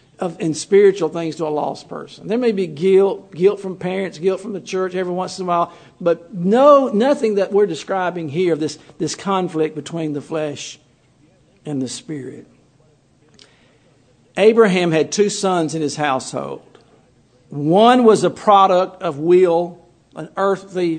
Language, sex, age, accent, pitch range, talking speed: English, male, 50-69, American, 155-205 Hz, 160 wpm